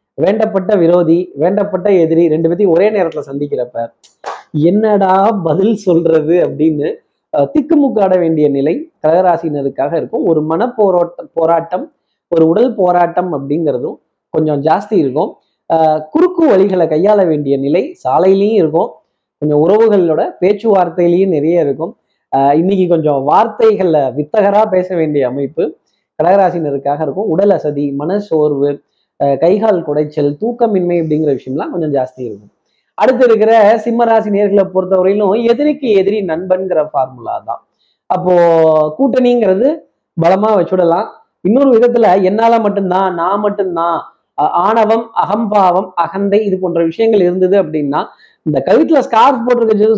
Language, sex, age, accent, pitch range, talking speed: Tamil, male, 20-39, native, 155-210 Hz, 120 wpm